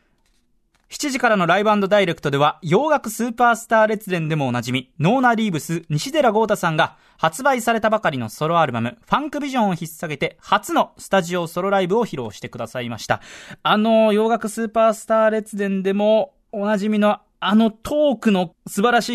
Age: 20-39